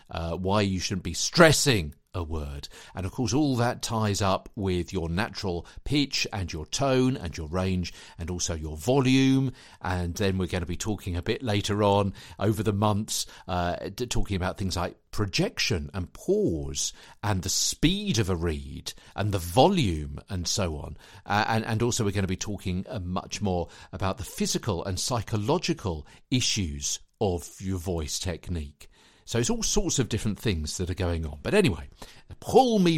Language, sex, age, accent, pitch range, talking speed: English, male, 50-69, British, 85-115 Hz, 180 wpm